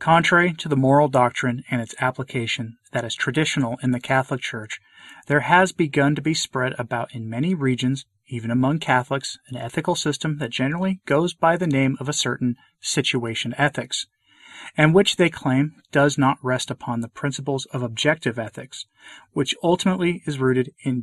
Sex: male